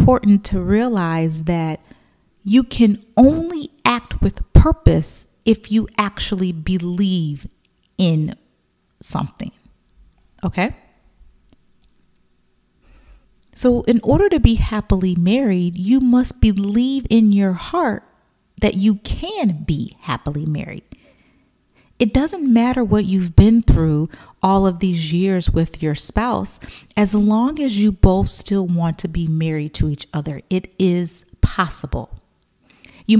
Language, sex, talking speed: English, female, 120 wpm